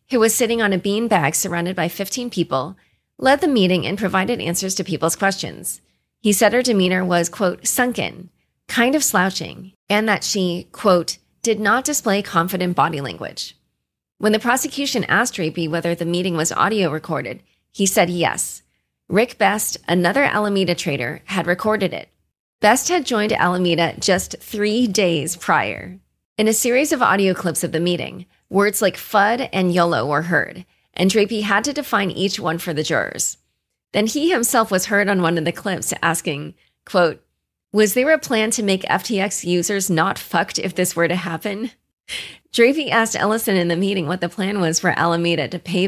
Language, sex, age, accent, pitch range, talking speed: English, female, 30-49, American, 170-215 Hz, 180 wpm